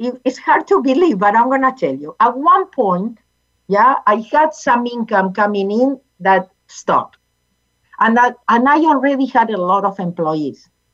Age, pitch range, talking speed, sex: 50-69, 190-255 Hz, 175 wpm, female